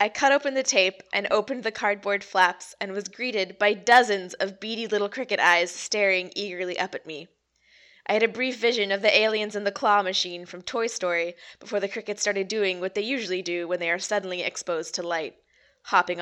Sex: female